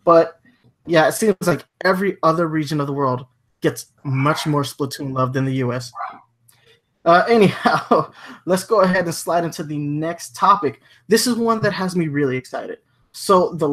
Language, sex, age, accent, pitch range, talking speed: English, male, 20-39, American, 135-170 Hz, 175 wpm